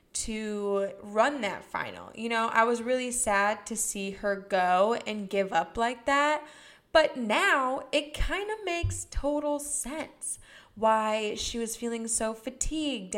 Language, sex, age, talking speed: English, female, 20-39, 150 wpm